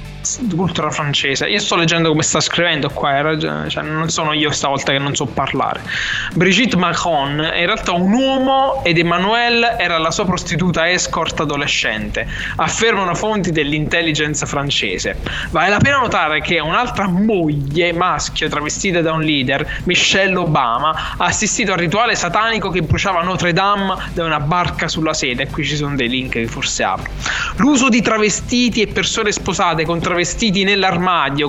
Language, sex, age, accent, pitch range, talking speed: Italian, male, 20-39, native, 155-190 Hz, 160 wpm